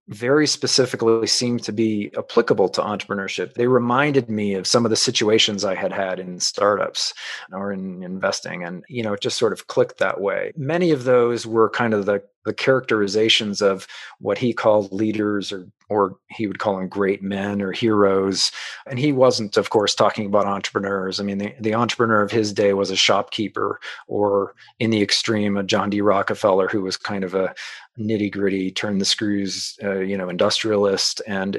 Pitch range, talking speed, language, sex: 95-115 Hz, 190 wpm, English, male